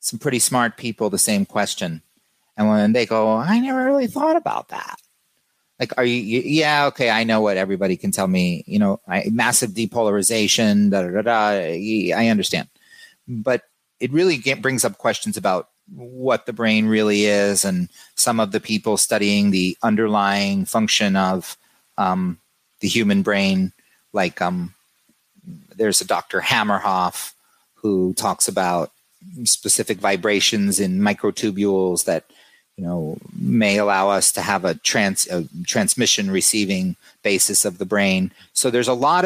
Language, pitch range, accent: English, 100-145 Hz, American